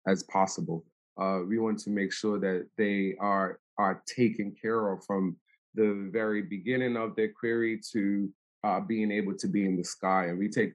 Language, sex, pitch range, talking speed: English, male, 100-120 Hz, 190 wpm